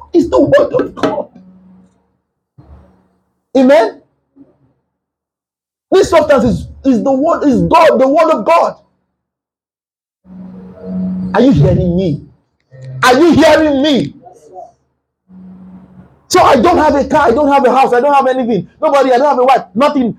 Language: English